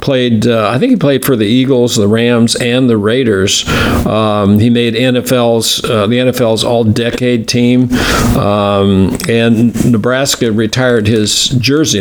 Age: 50-69